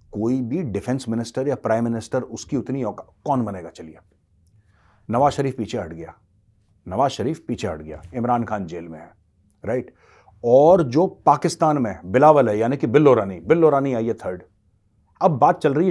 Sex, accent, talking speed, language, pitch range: male, native, 135 wpm, Hindi, 105-140 Hz